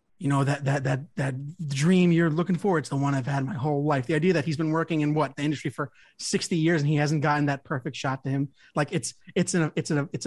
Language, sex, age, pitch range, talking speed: English, male, 30-49, 145-185 Hz, 265 wpm